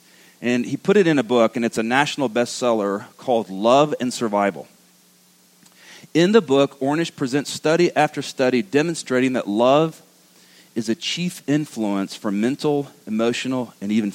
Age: 40-59